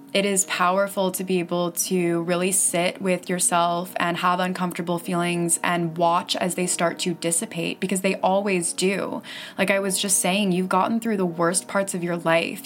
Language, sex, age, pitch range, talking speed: English, female, 20-39, 175-195 Hz, 190 wpm